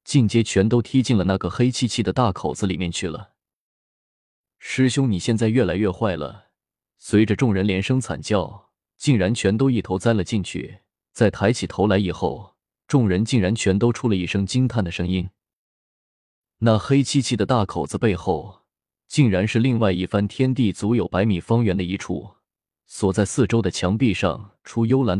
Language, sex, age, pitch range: Chinese, male, 20-39, 95-120 Hz